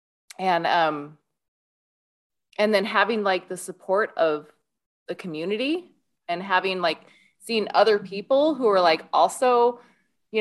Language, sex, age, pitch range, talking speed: English, female, 20-39, 170-230 Hz, 125 wpm